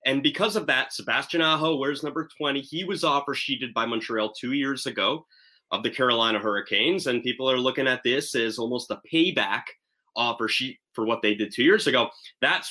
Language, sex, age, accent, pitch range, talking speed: English, male, 30-49, American, 115-155 Hz, 200 wpm